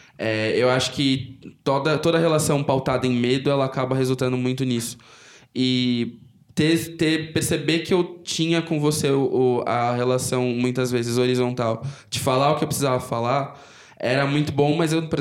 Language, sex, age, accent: Portuguese, male, 10-29, Brazilian